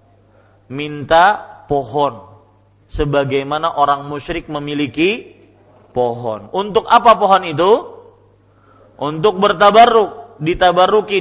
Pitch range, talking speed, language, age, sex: 145-240 Hz, 75 wpm, Malay, 40-59, male